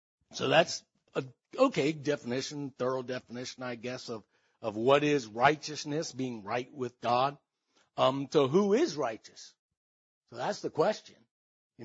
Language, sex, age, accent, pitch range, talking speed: English, male, 60-79, American, 130-195 Hz, 140 wpm